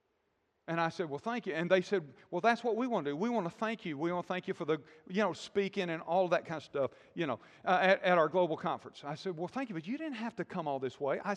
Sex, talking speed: male, 315 wpm